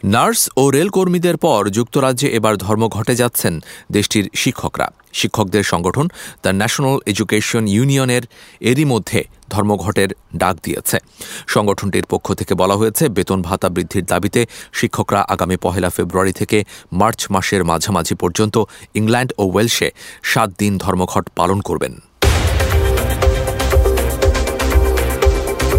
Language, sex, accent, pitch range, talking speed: English, male, Indian, 95-120 Hz, 105 wpm